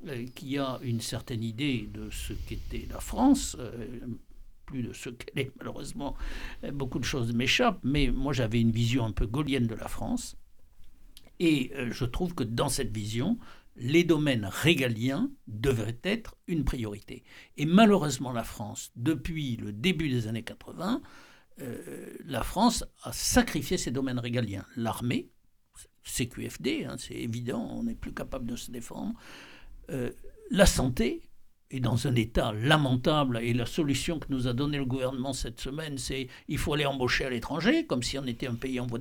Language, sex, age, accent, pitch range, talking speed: French, male, 60-79, French, 120-160 Hz, 175 wpm